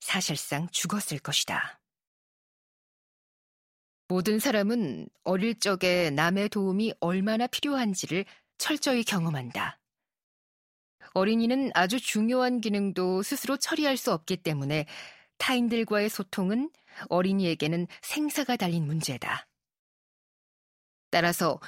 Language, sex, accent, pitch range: Korean, female, native, 175-230 Hz